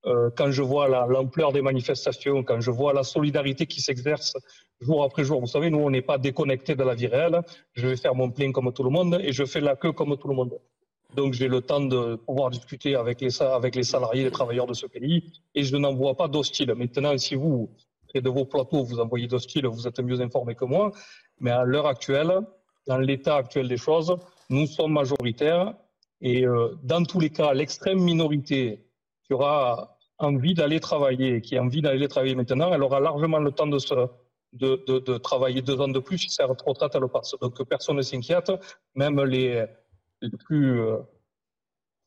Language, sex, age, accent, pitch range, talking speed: French, male, 40-59, French, 125-150 Hz, 205 wpm